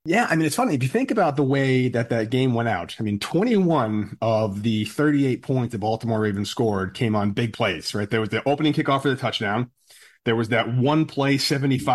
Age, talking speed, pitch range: 30-49, 225 wpm, 115-140 Hz